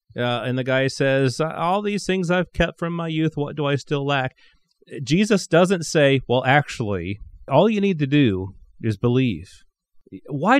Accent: American